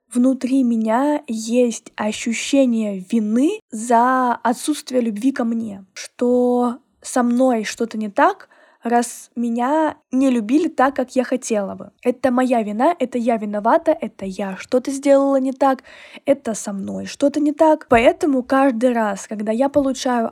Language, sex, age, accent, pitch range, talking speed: Russian, female, 10-29, native, 220-270 Hz, 145 wpm